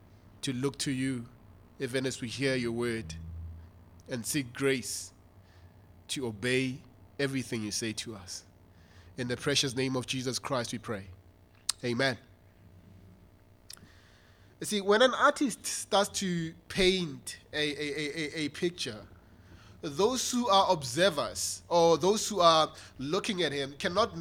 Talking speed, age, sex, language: 135 wpm, 20-39, male, English